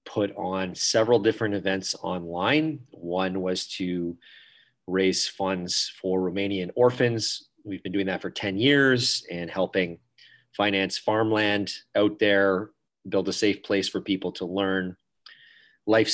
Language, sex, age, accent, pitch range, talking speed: English, male, 30-49, American, 95-115 Hz, 135 wpm